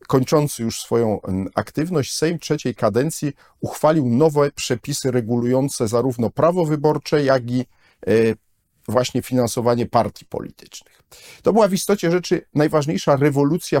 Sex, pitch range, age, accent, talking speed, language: male, 115-145 Hz, 50-69, native, 115 wpm, Polish